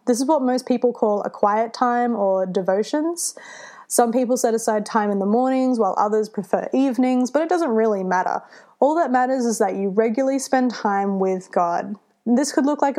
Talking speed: 200 wpm